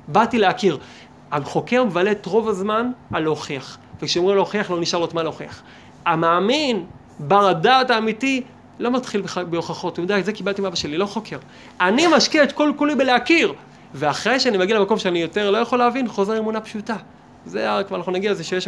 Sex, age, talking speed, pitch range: male, 30-49, 185 wpm, 170-215 Hz